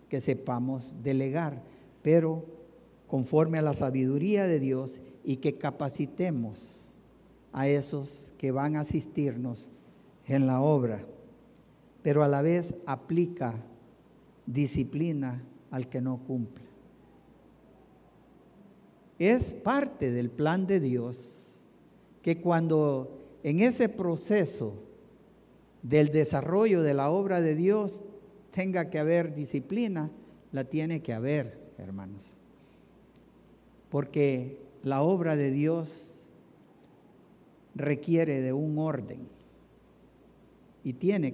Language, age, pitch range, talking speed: English, 50-69, 130-165 Hz, 100 wpm